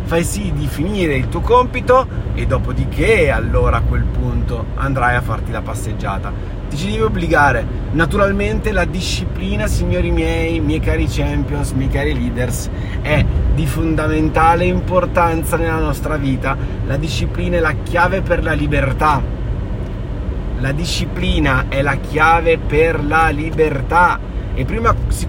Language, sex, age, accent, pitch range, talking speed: Italian, male, 30-49, native, 105-155 Hz, 140 wpm